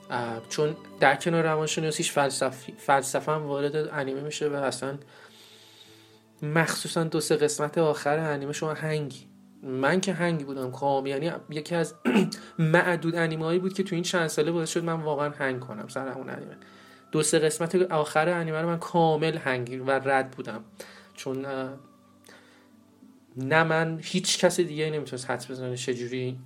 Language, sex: Persian, male